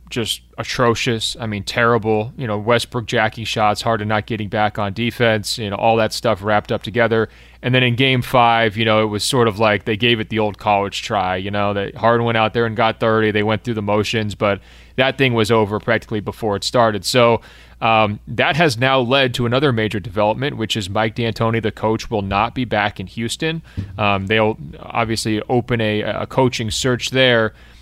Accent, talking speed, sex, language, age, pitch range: American, 215 wpm, male, English, 30-49, 110-125 Hz